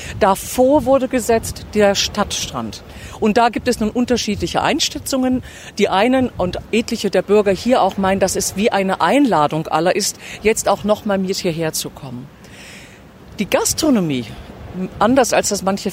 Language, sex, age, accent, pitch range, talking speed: German, female, 50-69, German, 160-220 Hz, 155 wpm